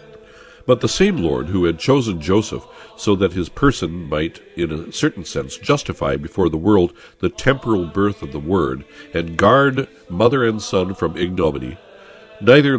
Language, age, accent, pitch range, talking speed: English, 60-79, American, 80-120 Hz, 165 wpm